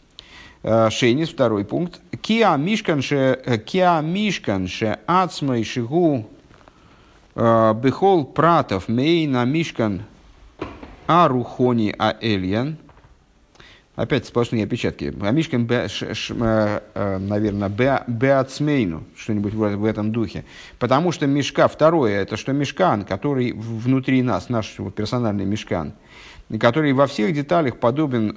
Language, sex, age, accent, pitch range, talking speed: Russian, male, 50-69, native, 110-145 Hz, 85 wpm